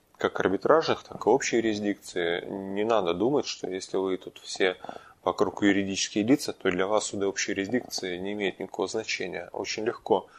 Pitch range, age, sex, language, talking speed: 95-115 Hz, 20-39, male, Russian, 165 wpm